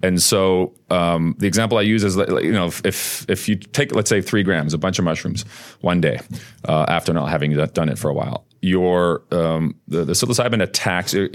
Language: English